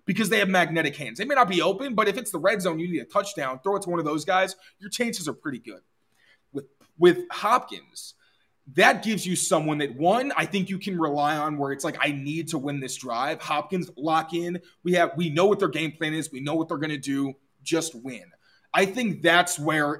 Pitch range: 150-195 Hz